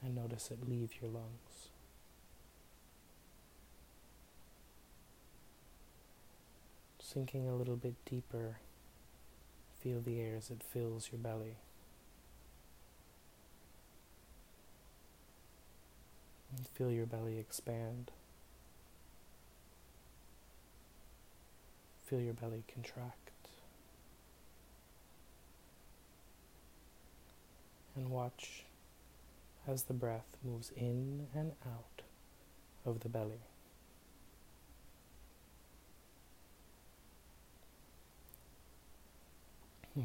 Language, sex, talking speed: English, male, 60 wpm